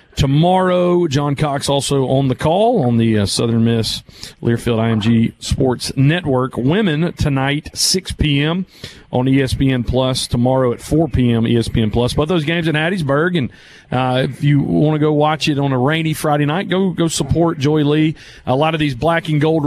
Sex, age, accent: male, 40-59, American